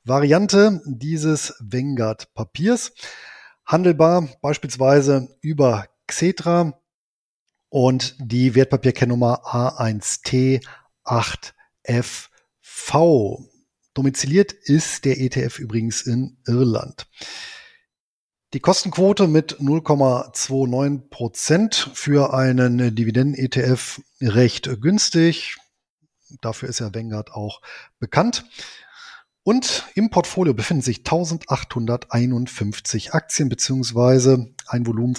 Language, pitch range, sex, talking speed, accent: German, 120-160 Hz, male, 75 wpm, German